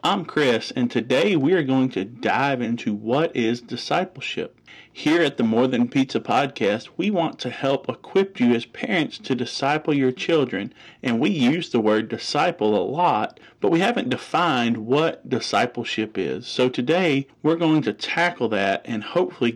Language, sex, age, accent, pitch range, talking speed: English, male, 40-59, American, 110-135 Hz, 170 wpm